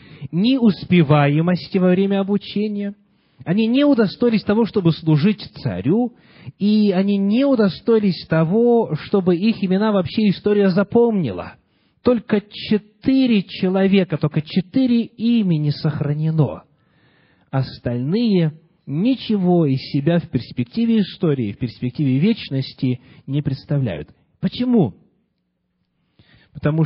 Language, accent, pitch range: Russian, native, 130-195 Hz